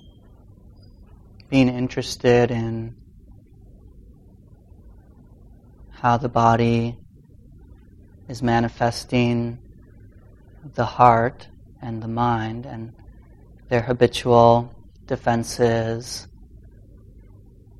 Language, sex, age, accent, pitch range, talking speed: English, male, 30-49, American, 105-120 Hz, 55 wpm